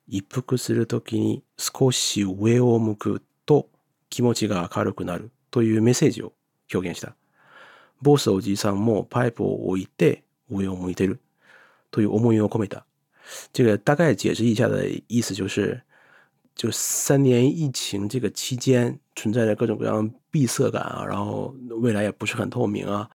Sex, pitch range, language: male, 105-130 Hz, Chinese